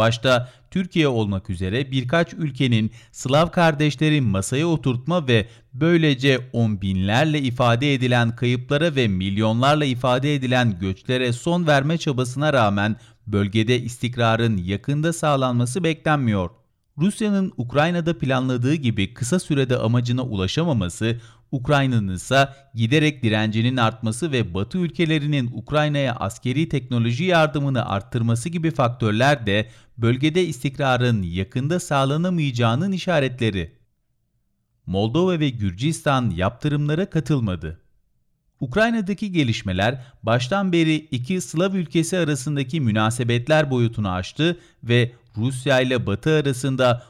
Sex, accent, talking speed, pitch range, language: male, native, 105 wpm, 115-150 Hz, Turkish